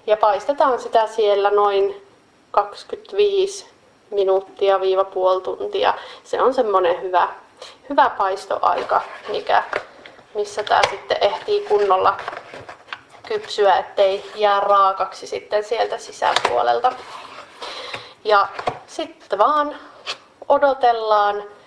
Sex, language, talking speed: female, Finnish, 90 wpm